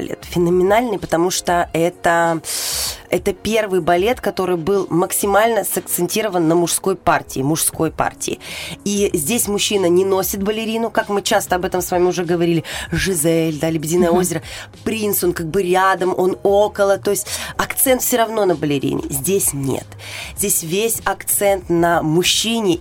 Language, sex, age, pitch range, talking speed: Russian, female, 20-39, 160-195 Hz, 150 wpm